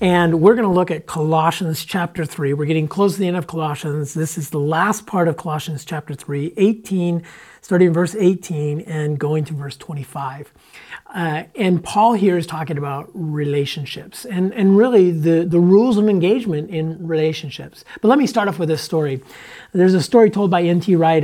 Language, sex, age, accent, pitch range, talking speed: English, male, 40-59, American, 155-190 Hz, 190 wpm